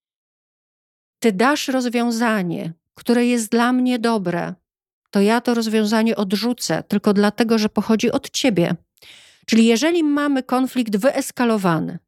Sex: female